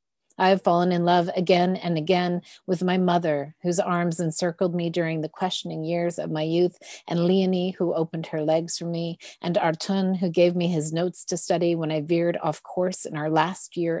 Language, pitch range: English, 160-180 Hz